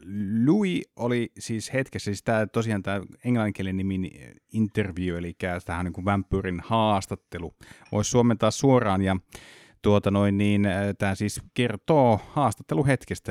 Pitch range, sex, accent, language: 90-110 Hz, male, native, Finnish